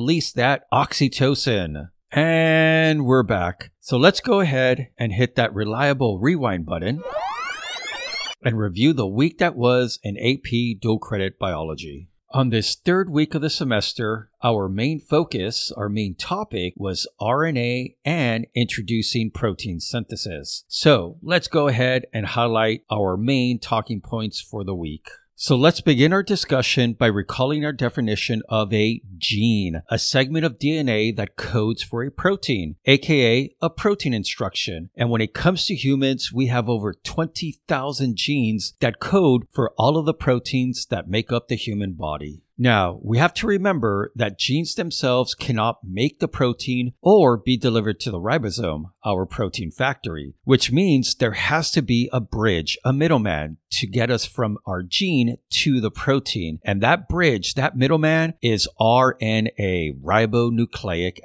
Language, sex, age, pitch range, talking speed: English, male, 50-69, 105-140 Hz, 155 wpm